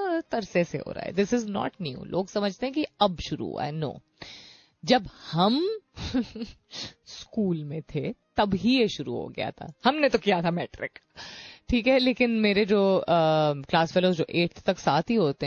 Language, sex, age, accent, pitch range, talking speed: Hindi, female, 30-49, native, 170-240 Hz, 180 wpm